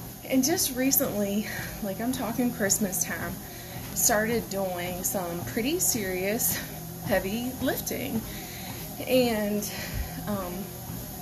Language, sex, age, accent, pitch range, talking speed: English, female, 20-39, American, 180-225 Hz, 90 wpm